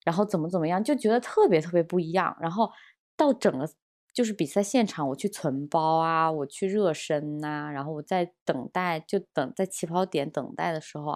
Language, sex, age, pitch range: Chinese, female, 20-39, 160-225 Hz